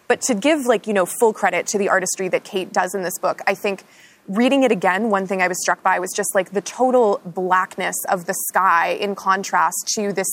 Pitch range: 180-210 Hz